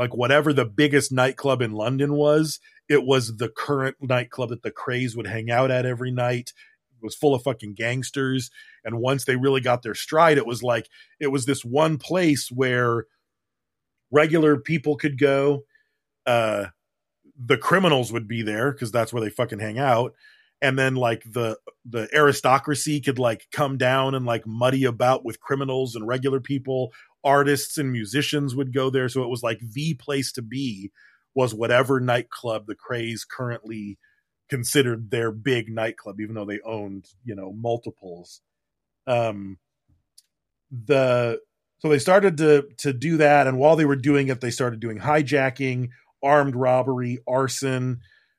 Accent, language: American, English